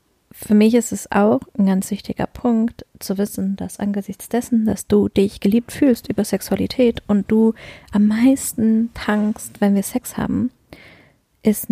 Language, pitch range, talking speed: German, 195-235 Hz, 160 wpm